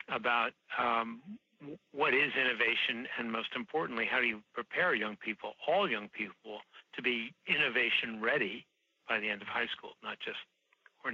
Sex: male